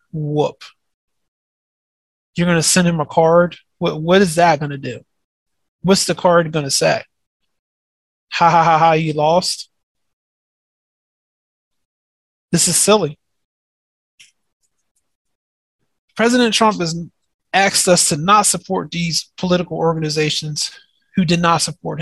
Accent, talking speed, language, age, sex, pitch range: American, 125 wpm, English, 30-49, male, 155-185 Hz